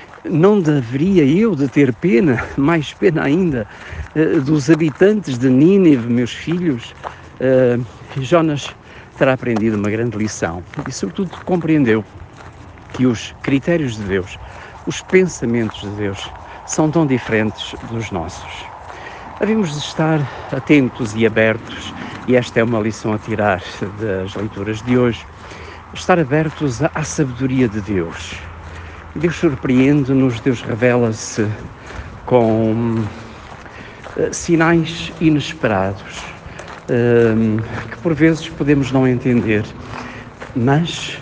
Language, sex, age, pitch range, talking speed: Portuguese, male, 60-79, 110-155 Hz, 110 wpm